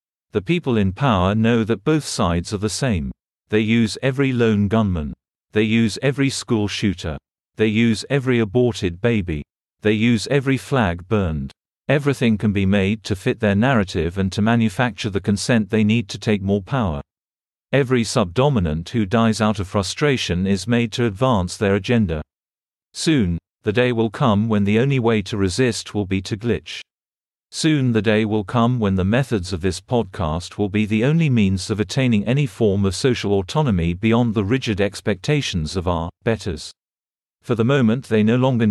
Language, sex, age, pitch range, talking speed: English, male, 50-69, 100-120 Hz, 175 wpm